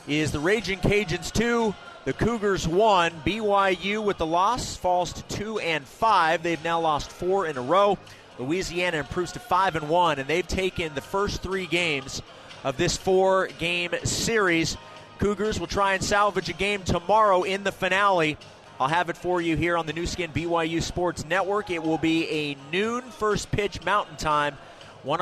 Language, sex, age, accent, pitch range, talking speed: English, male, 30-49, American, 160-195 Hz, 180 wpm